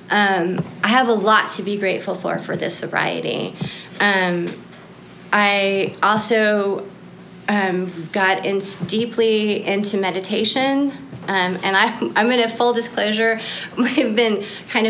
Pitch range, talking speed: 190-230 Hz, 120 wpm